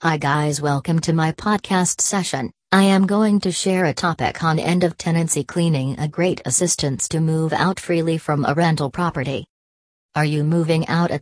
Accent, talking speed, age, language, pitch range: American, 185 wpm, 40-59, English, 150-175 Hz